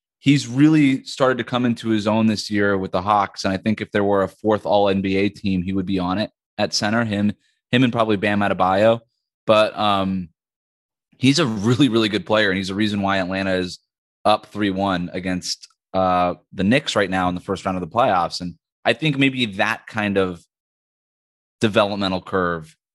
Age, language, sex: 20-39, English, male